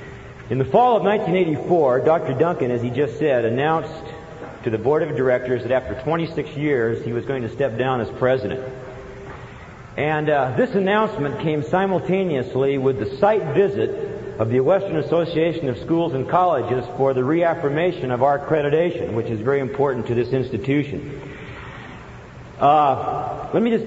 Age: 50-69